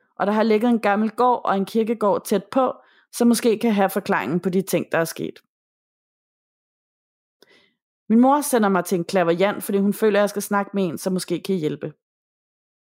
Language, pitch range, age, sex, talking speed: Danish, 180-220 Hz, 30-49, female, 205 wpm